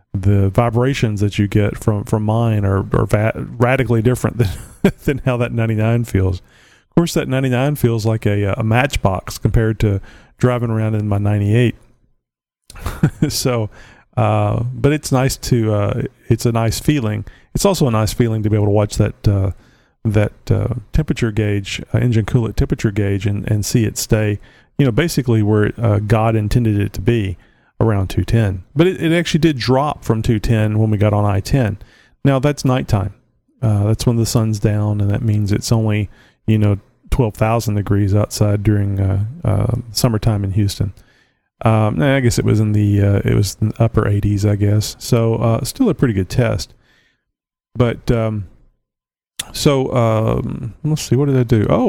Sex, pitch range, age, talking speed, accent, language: male, 105-125 Hz, 40-59, 180 wpm, American, English